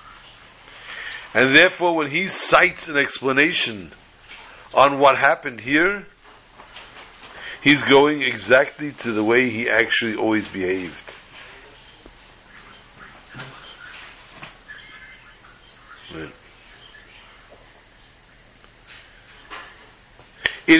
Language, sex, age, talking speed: English, male, 60-79, 65 wpm